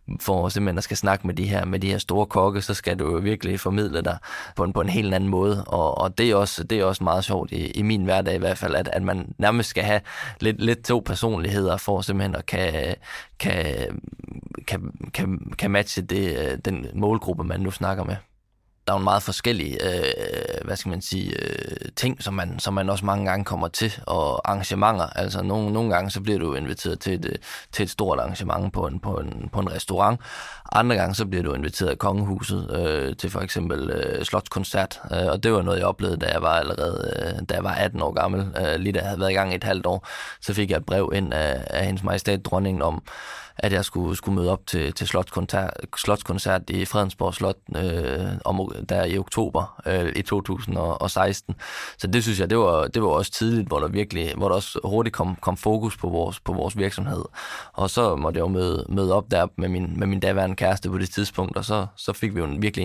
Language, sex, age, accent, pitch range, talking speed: Danish, male, 20-39, native, 90-105 Hz, 230 wpm